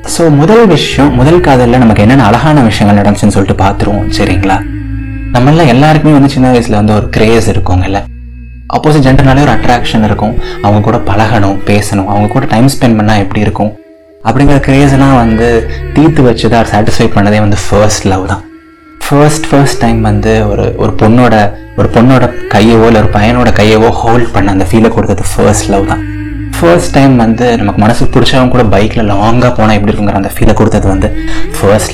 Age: 20-39